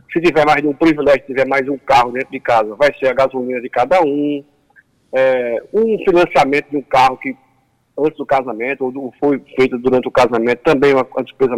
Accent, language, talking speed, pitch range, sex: Brazilian, Portuguese, 210 wpm, 130-195 Hz, male